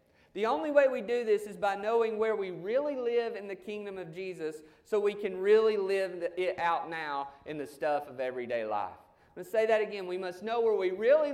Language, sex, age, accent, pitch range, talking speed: English, male, 30-49, American, 155-220 Hz, 220 wpm